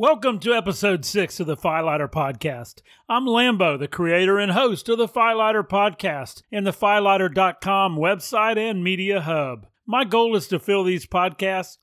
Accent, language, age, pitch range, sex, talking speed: American, English, 40-59, 160-215 Hz, male, 160 wpm